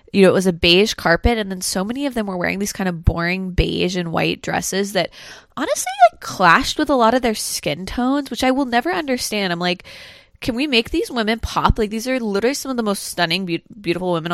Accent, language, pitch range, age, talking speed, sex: American, English, 165-205 Hz, 20-39, 245 wpm, female